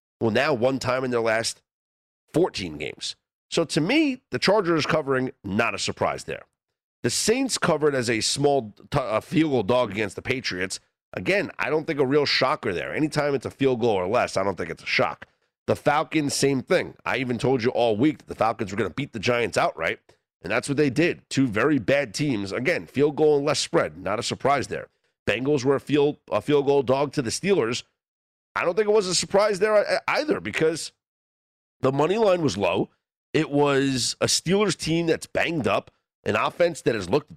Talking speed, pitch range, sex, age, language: 205 wpm, 125-165 Hz, male, 30-49, English